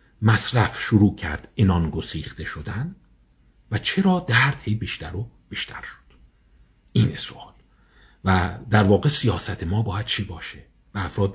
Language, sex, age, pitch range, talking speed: Persian, male, 50-69, 100-140 Hz, 140 wpm